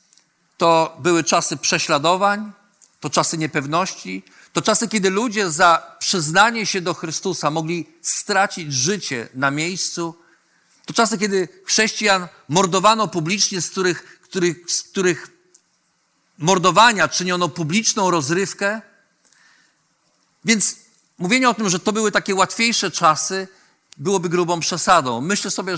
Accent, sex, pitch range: native, male, 165-200 Hz